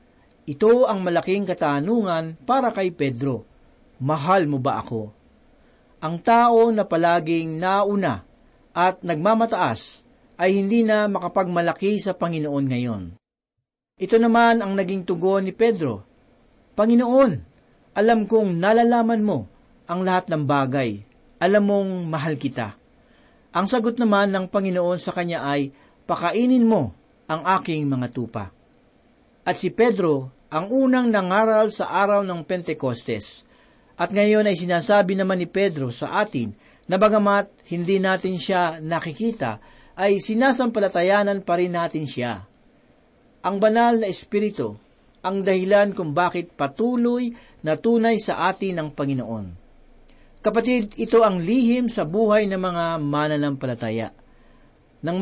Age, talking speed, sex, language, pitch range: 40-59, 125 wpm, male, Filipino, 155-215 Hz